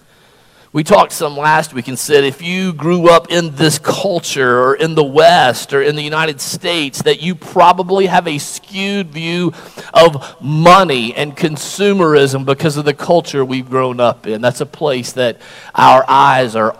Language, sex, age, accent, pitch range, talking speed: English, male, 40-59, American, 150-190 Hz, 175 wpm